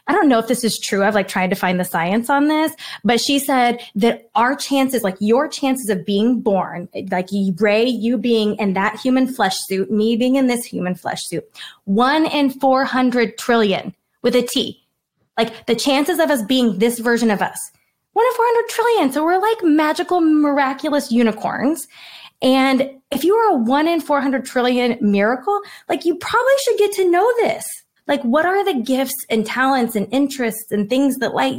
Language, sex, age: English, female, 20-39